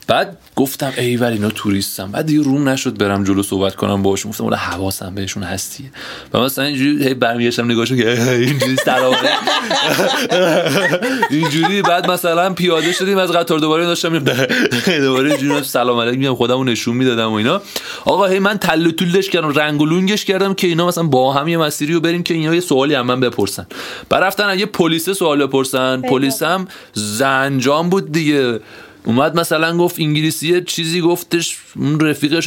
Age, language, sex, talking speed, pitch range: 30-49, Persian, male, 165 wpm, 125-165 Hz